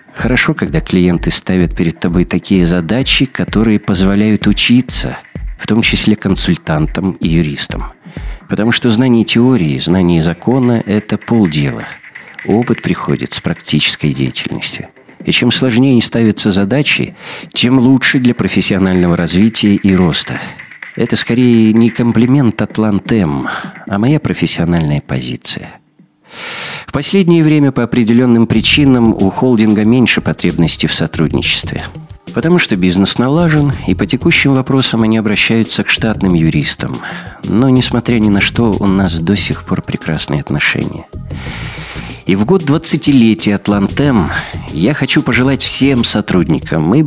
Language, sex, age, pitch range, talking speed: Russian, male, 50-69, 95-125 Hz, 125 wpm